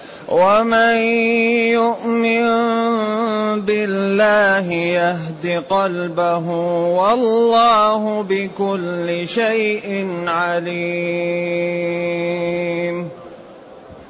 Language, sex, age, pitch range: Arabic, male, 30-49, 180-235 Hz